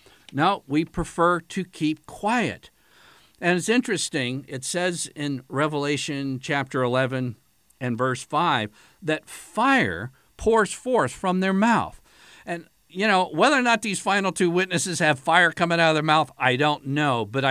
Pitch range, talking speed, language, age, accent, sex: 160-235 Hz, 160 wpm, English, 50-69, American, male